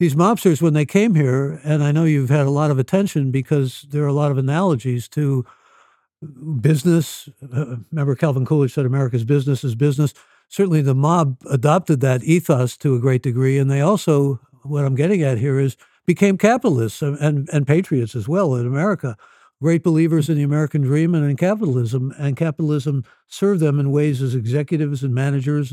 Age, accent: 60-79, American